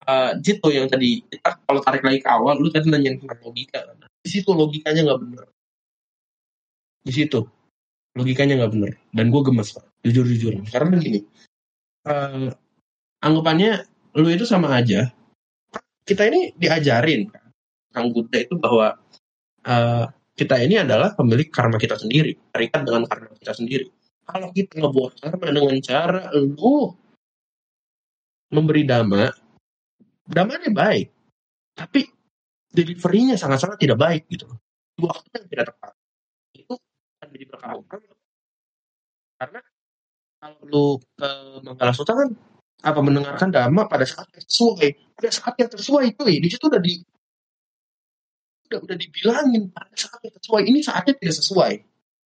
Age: 20-39